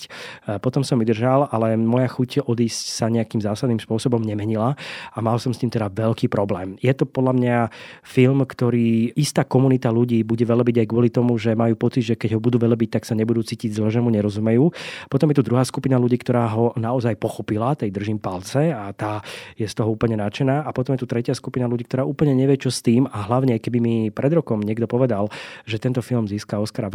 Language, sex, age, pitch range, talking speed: Slovak, male, 20-39, 110-130 Hz, 210 wpm